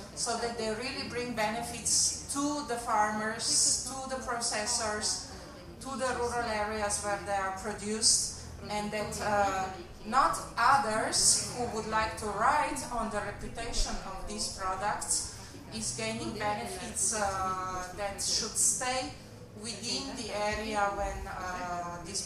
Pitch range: 185-230 Hz